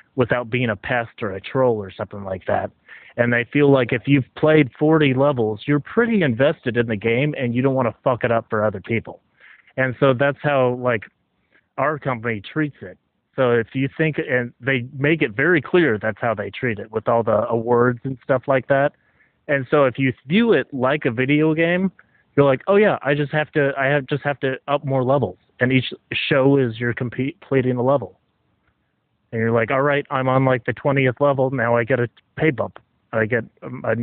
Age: 30-49